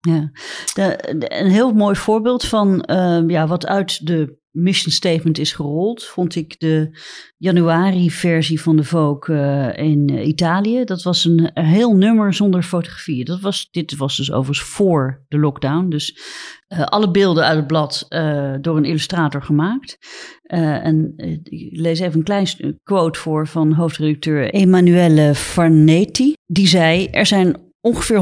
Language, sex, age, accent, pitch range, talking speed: Dutch, female, 40-59, Dutch, 155-185 Hz, 150 wpm